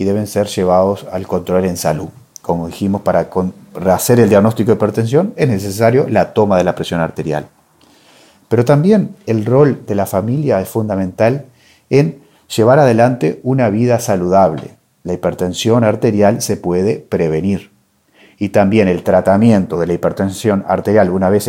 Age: 40-59